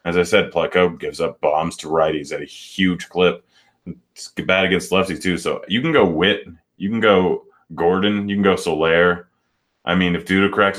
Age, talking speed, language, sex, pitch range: 20-39, 200 wpm, English, male, 85-95 Hz